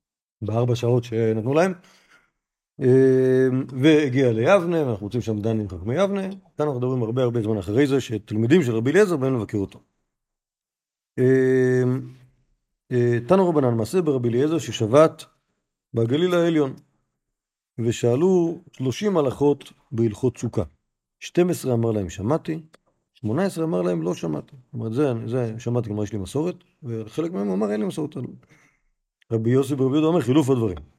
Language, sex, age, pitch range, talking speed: Hebrew, male, 50-69, 115-155 Hz, 140 wpm